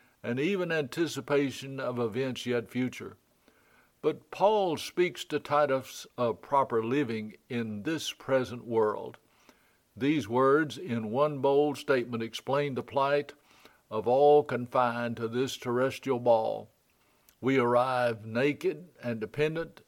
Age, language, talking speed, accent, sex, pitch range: 60-79, English, 120 wpm, American, male, 120-145 Hz